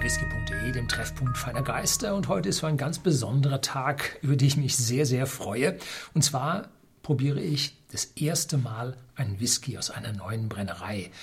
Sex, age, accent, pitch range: male, 60-79, German, 130-155 Hz